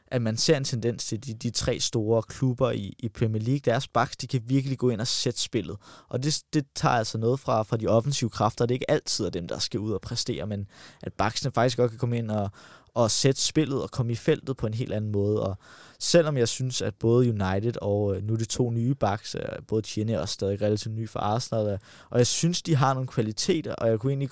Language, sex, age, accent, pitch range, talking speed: Danish, male, 20-39, native, 105-130 Hz, 250 wpm